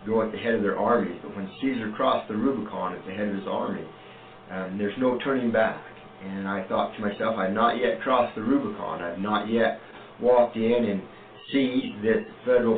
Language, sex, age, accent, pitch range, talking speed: English, male, 50-69, American, 100-120 Hz, 205 wpm